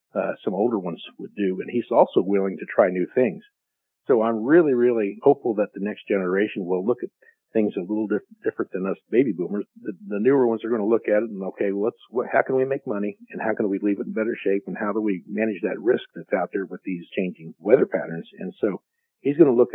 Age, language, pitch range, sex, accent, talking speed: 50-69, English, 100-125 Hz, male, American, 255 wpm